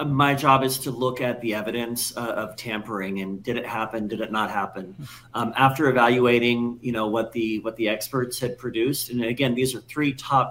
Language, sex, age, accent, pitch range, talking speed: English, male, 40-59, American, 115-130 Hz, 210 wpm